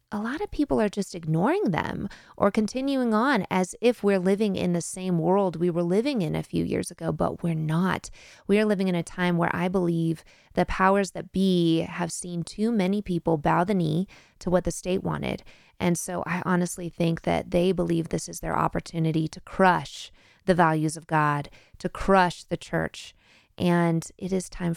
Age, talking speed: 20-39, 200 wpm